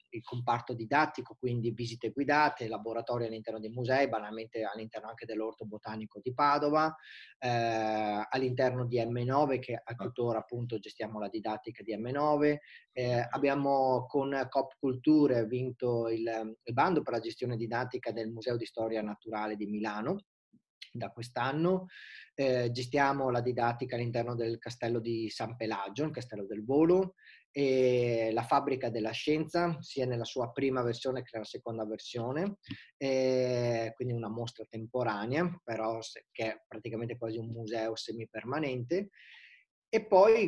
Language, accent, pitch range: Italian, native, 115-140 Hz